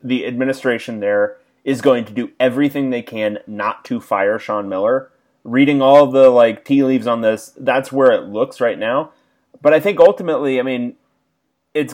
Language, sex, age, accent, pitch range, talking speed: English, male, 30-49, American, 115-155 Hz, 180 wpm